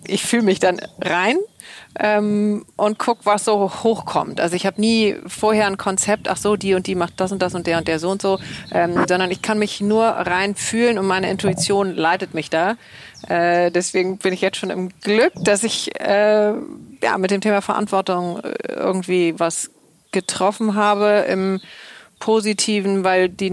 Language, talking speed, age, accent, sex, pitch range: German, 185 wpm, 40-59, German, female, 170-205 Hz